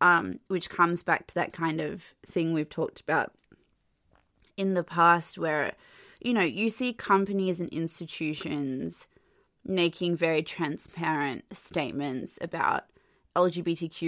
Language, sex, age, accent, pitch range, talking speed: English, female, 20-39, Australian, 155-180 Hz, 125 wpm